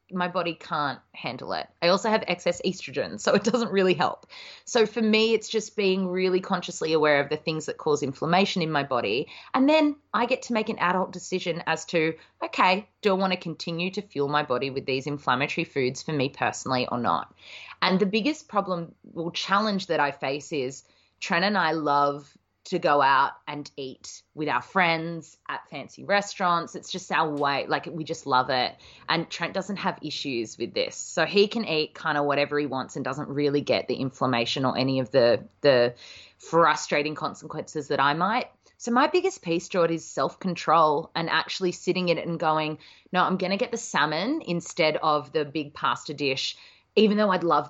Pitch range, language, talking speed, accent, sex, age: 145-190 Hz, English, 200 wpm, Australian, female, 20-39